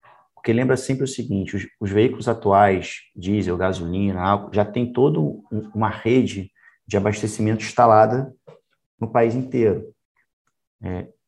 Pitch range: 100-120 Hz